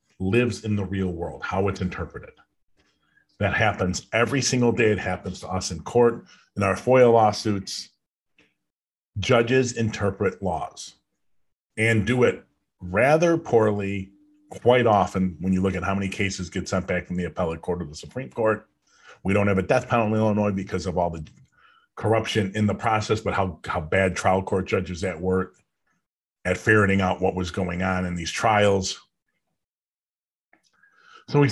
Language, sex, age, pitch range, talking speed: English, male, 40-59, 95-120 Hz, 165 wpm